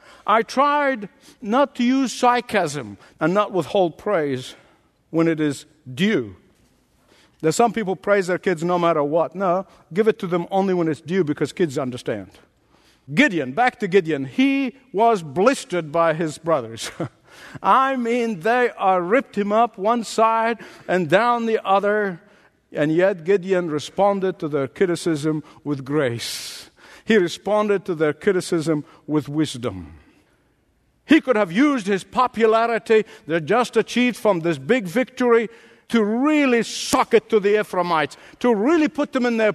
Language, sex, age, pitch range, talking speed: English, male, 50-69, 170-230 Hz, 155 wpm